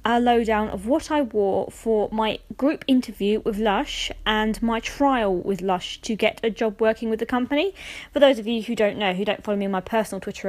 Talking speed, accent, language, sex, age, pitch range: 230 wpm, British, English, female, 20-39, 210-245 Hz